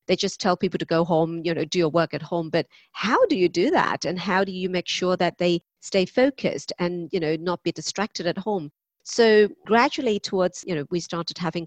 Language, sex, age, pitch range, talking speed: English, female, 40-59, 165-200 Hz, 235 wpm